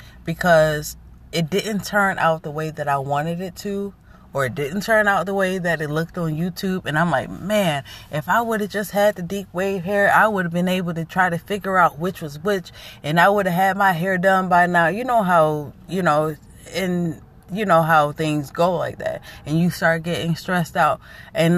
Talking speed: 225 wpm